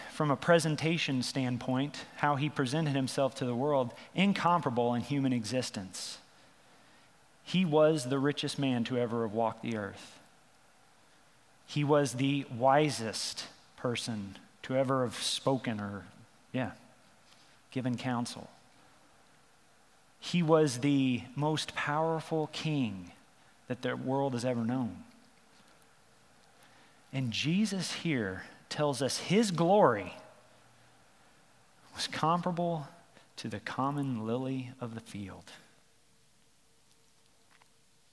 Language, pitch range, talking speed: English, 120-150 Hz, 105 wpm